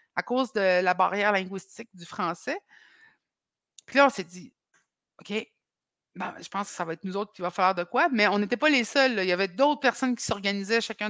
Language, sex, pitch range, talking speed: French, female, 190-255 Hz, 240 wpm